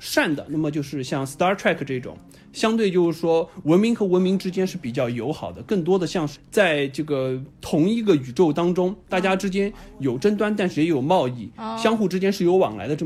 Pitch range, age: 145-195 Hz, 20-39